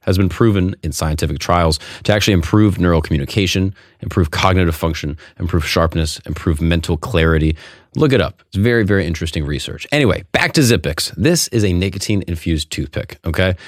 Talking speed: 160 wpm